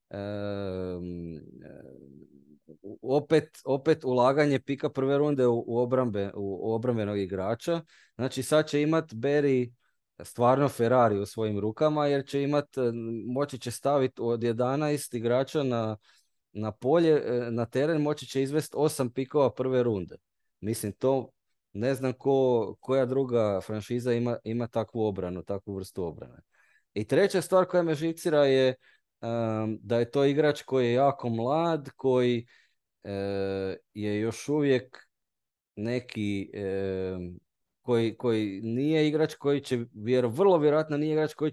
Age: 20-39